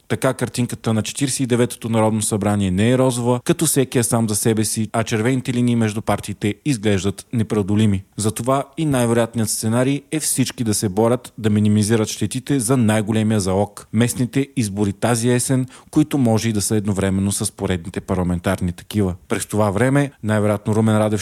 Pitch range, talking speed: 100-120 Hz, 165 wpm